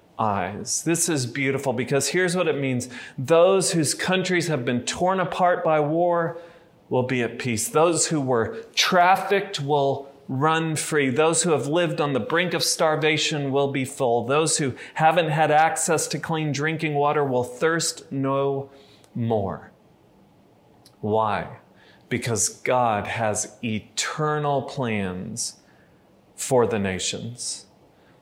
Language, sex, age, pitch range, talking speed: English, male, 40-59, 125-160 Hz, 135 wpm